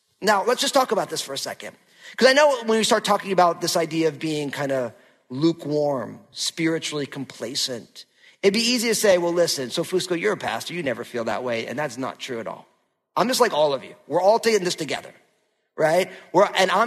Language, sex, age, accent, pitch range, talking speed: English, male, 40-59, American, 155-225 Hz, 225 wpm